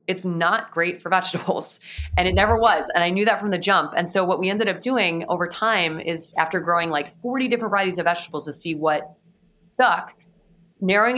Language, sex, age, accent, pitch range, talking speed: English, female, 20-39, American, 160-200 Hz, 210 wpm